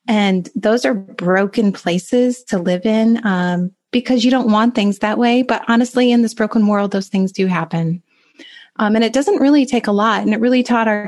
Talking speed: 210 wpm